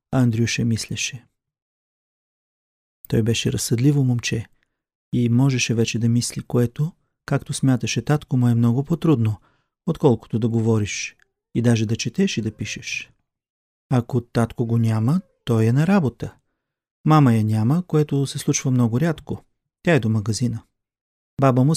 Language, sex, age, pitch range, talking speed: Bulgarian, male, 40-59, 120-145 Hz, 140 wpm